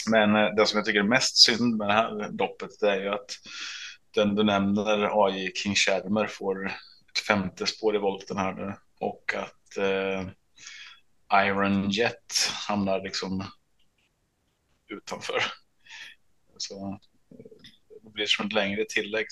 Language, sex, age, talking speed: Swedish, male, 20-39, 135 wpm